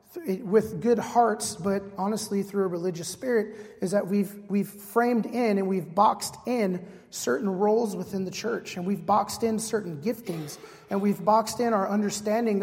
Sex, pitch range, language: male, 195-230 Hz, English